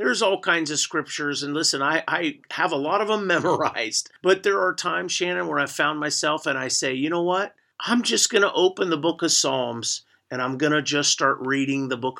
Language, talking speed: English, 235 wpm